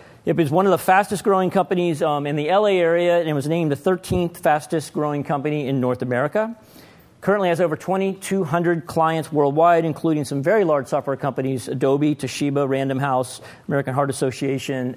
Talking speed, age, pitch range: 170 wpm, 40-59, 135-175 Hz